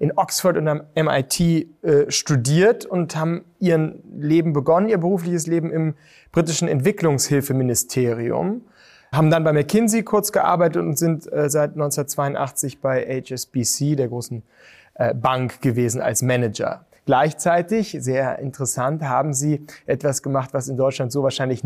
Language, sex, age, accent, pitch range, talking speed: German, male, 30-49, German, 130-160 Hz, 140 wpm